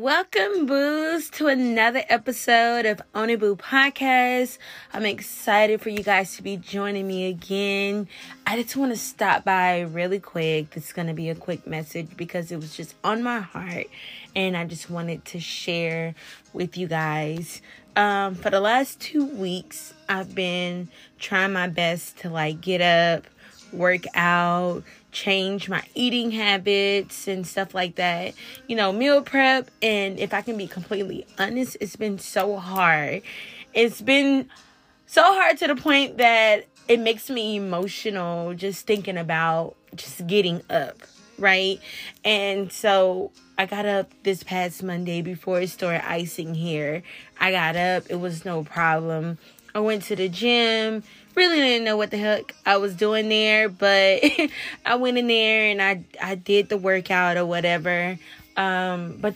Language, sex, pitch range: English, female, 175-220 Hz